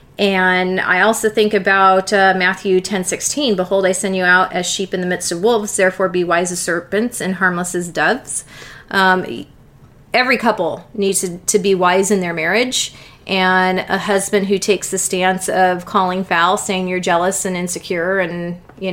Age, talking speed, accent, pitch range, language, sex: 30-49, 185 wpm, American, 180-210 Hz, English, female